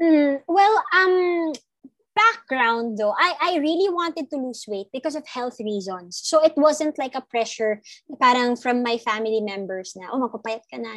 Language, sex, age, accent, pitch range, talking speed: Filipino, female, 20-39, native, 210-285 Hz, 155 wpm